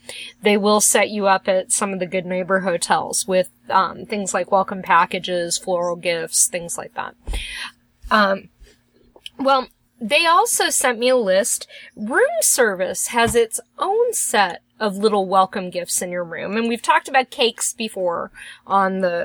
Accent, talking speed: American, 160 wpm